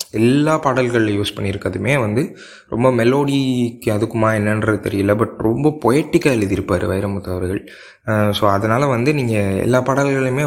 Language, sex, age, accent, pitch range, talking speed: Tamil, male, 20-39, native, 100-125 Hz, 125 wpm